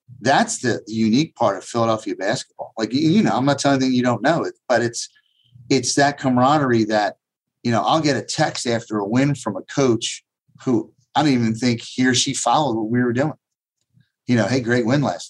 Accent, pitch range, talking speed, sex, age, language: American, 115-135 Hz, 220 wpm, male, 40-59, English